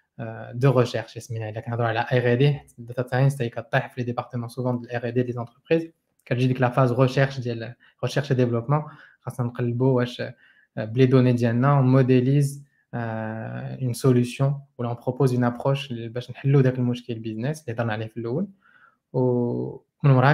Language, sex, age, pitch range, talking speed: Arabic, male, 20-39, 120-140 Hz, 155 wpm